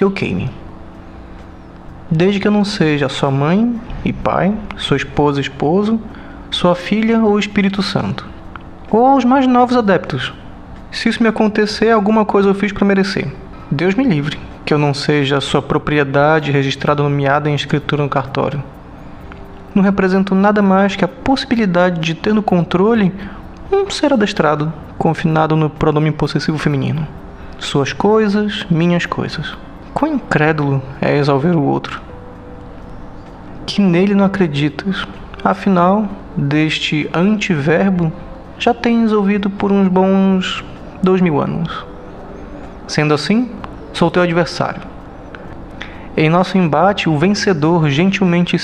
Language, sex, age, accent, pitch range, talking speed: Portuguese, male, 20-39, Brazilian, 145-200 Hz, 135 wpm